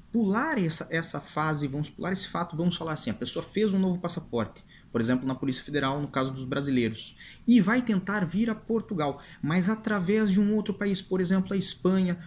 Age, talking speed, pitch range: 20-39, 200 wpm, 135-195 Hz